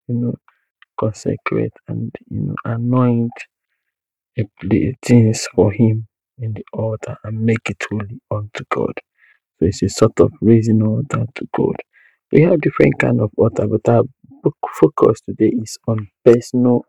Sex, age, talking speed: male, 50-69, 150 wpm